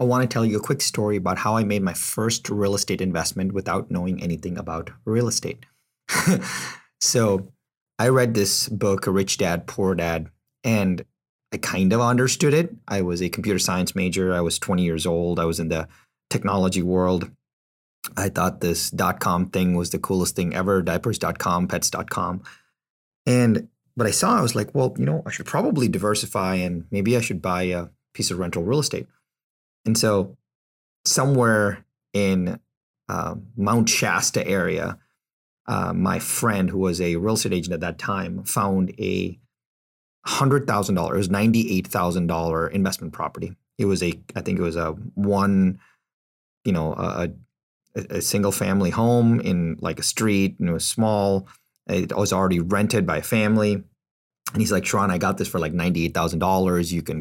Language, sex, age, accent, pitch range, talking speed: English, male, 30-49, American, 90-110 Hz, 175 wpm